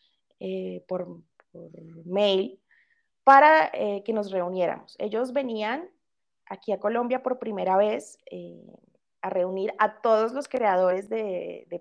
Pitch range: 190-260 Hz